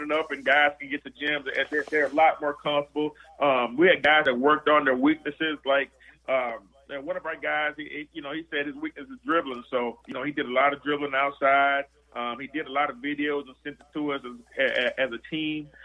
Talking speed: 255 wpm